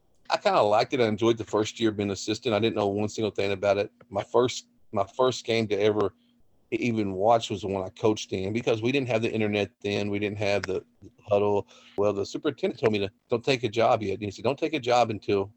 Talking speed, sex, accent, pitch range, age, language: 260 wpm, male, American, 100-120 Hz, 40-59, English